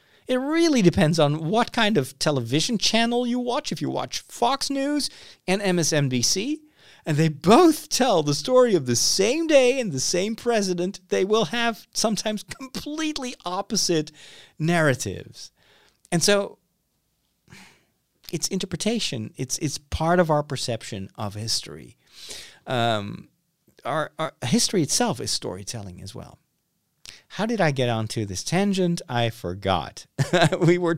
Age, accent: 40-59, American